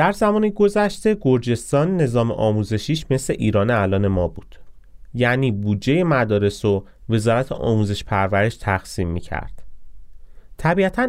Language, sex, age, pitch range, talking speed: Persian, male, 30-49, 100-145 Hz, 115 wpm